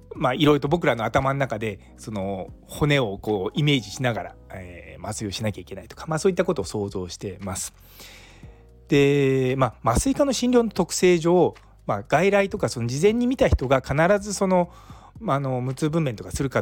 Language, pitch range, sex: Japanese, 110-170 Hz, male